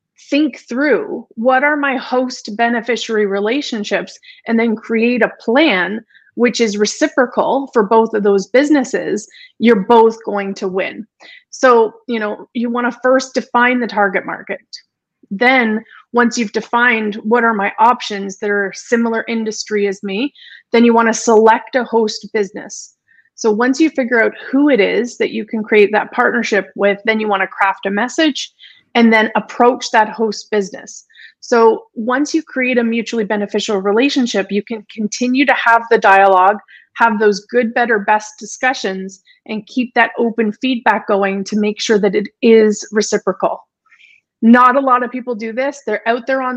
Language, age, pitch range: English, 30-49, 210-250 Hz